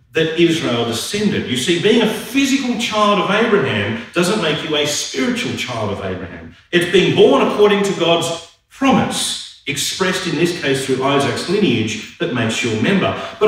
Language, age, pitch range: English, 50-69, 125-200 Hz